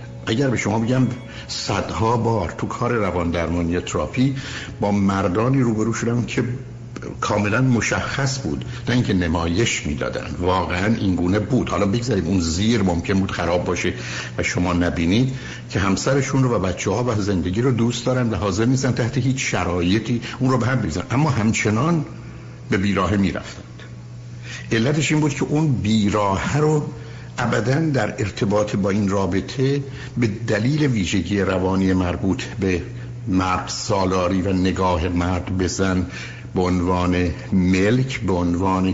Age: 60-79